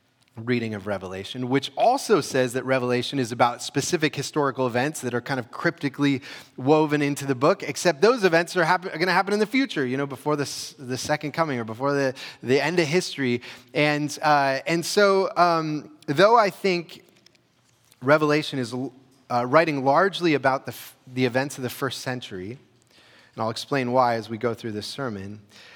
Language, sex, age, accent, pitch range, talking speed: English, male, 30-49, American, 120-150 Hz, 185 wpm